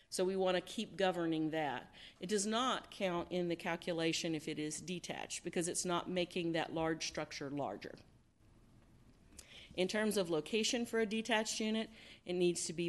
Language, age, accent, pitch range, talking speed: English, 50-69, American, 155-185 Hz, 175 wpm